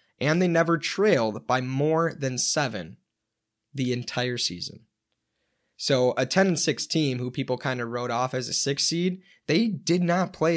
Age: 20-39